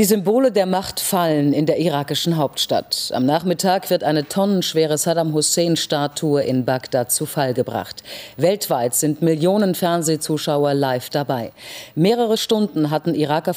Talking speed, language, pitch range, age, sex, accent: 135 wpm, German, 140-175 Hz, 40-59, female, German